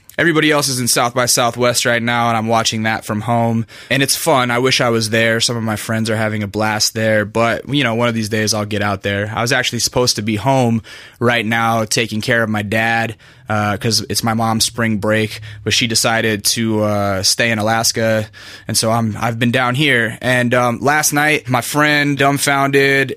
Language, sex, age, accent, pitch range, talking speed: English, male, 20-39, American, 110-130 Hz, 230 wpm